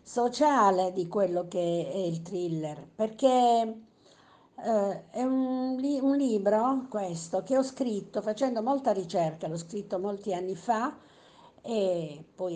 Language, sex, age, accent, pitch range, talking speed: Italian, female, 50-69, native, 180-220 Hz, 130 wpm